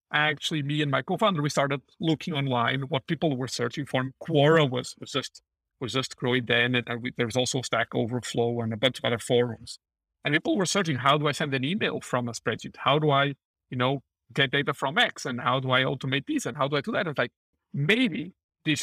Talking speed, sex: 235 wpm, male